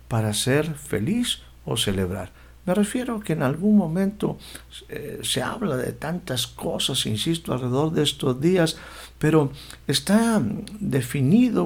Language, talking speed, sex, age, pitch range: Spanish, 135 wpm, male, 60-79, 115-165 Hz